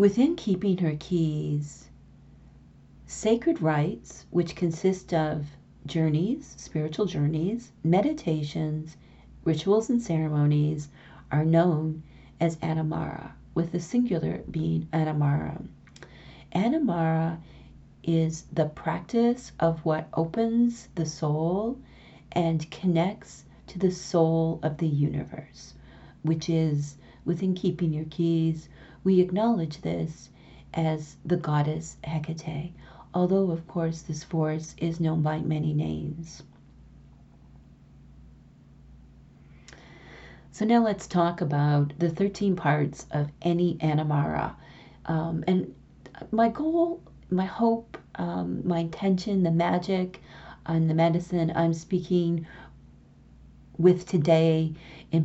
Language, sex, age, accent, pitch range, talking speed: English, female, 40-59, American, 150-175 Hz, 105 wpm